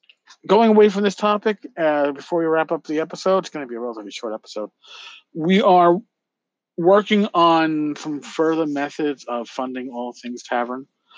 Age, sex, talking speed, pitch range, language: 50-69, male, 170 wpm, 135-180 Hz, English